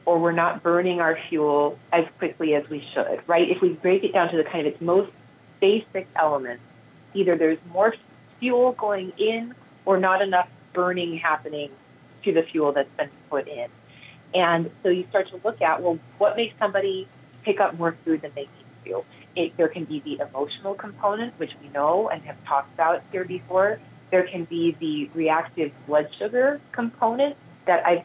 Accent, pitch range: American, 155-190 Hz